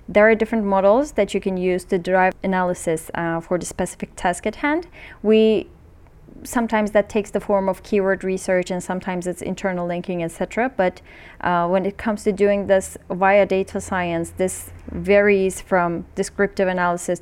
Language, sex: English, female